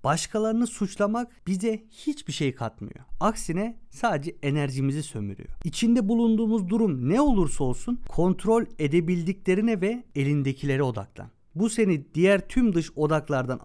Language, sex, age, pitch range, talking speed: Turkish, male, 50-69, 135-205 Hz, 120 wpm